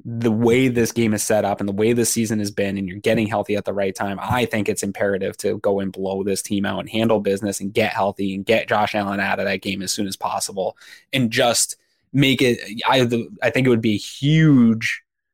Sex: male